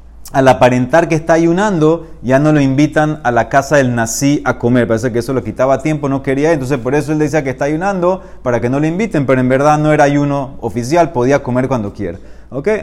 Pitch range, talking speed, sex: 130-170 Hz, 230 wpm, male